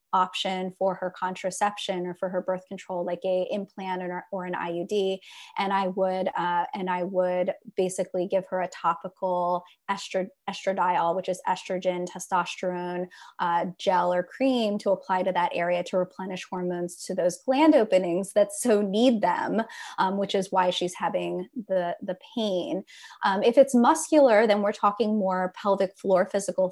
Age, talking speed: 20-39, 165 wpm